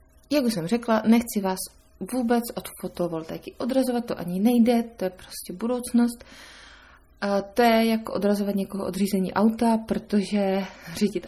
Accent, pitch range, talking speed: native, 185-235 Hz, 145 wpm